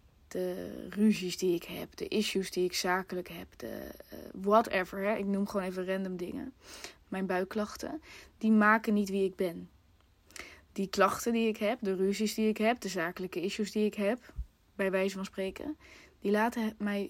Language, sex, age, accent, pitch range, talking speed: Dutch, female, 20-39, Dutch, 185-215 Hz, 170 wpm